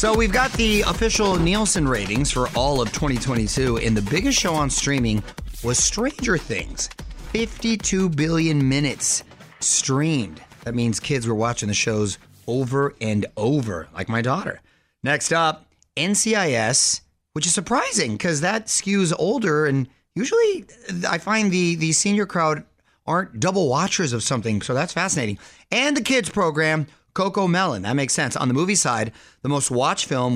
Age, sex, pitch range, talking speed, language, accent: 30-49, male, 115-175 Hz, 160 wpm, English, American